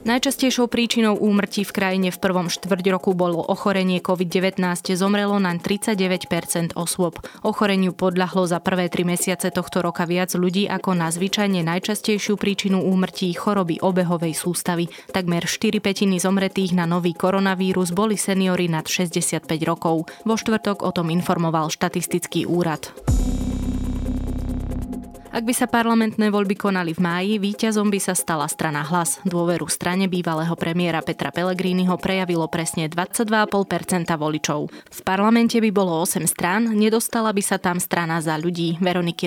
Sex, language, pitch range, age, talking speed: female, Slovak, 170-200 Hz, 20-39, 140 wpm